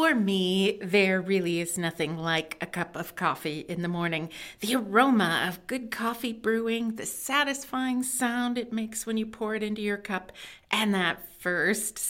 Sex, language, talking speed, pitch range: female, English, 175 wpm, 175-230 Hz